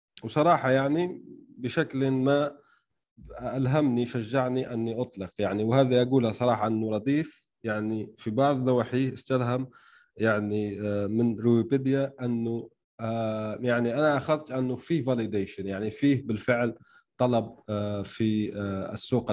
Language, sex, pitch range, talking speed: Arabic, male, 115-140 Hz, 110 wpm